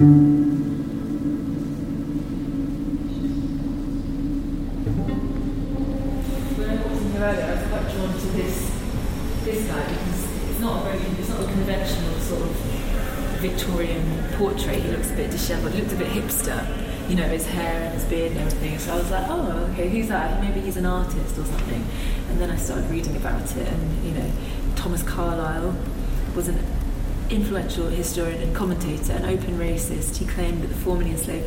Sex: female